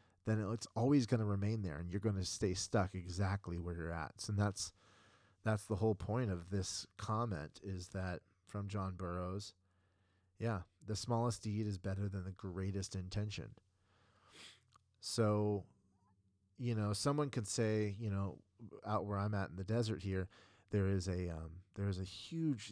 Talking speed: 175 wpm